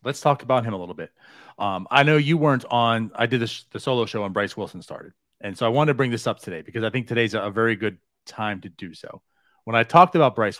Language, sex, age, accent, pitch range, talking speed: English, male, 30-49, American, 115-155 Hz, 275 wpm